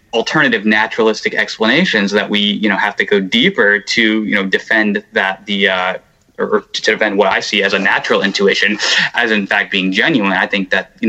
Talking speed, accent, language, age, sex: 200 wpm, American, English, 20-39, male